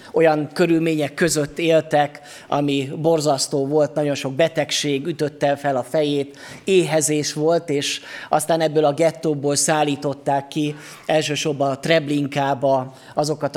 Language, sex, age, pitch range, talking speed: Hungarian, male, 30-49, 145-175 Hz, 120 wpm